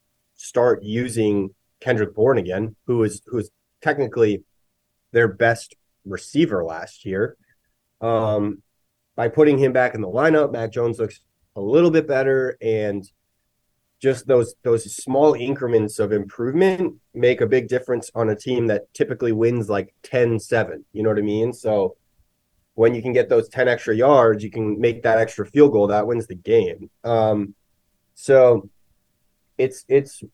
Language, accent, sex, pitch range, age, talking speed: English, American, male, 105-125 Hz, 20-39, 155 wpm